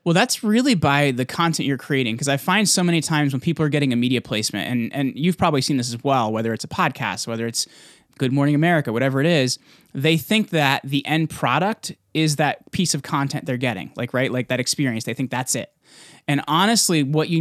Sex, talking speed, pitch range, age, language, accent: male, 230 wpm, 130-160 Hz, 20-39, English, American